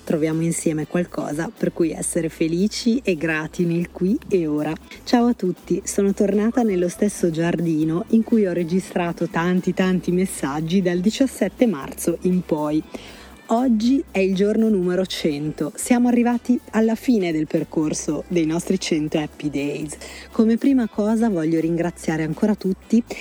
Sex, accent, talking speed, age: female, native, 145 wpm, 30-49